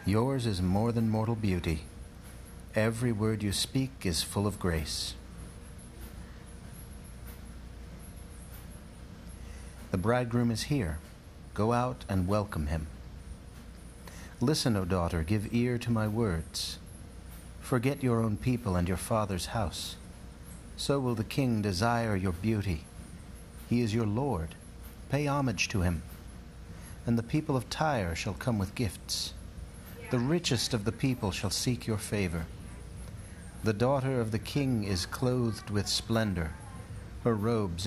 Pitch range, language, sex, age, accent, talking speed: 90-115 Hz, English, male, 60-79, American, 130 wpm